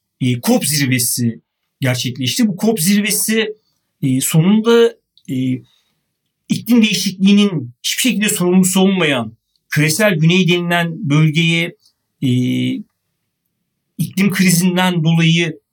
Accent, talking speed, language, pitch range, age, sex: native, 90 wpm, Turkish, 135-200 Hz, 60-79, male